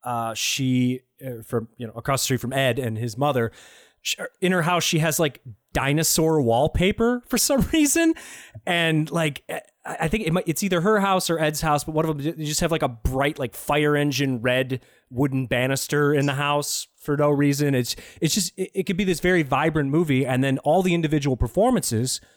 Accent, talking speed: American, 205 wpm